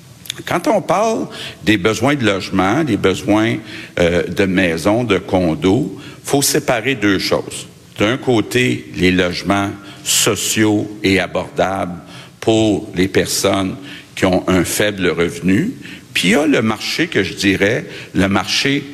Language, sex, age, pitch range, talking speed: French, male, 60-79, 95-110 Hz, 145 wpm